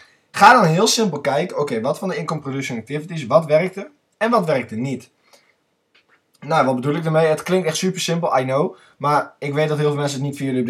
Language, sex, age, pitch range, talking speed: Dutch, male, 20-39, 125-165 Hz, 235 wpm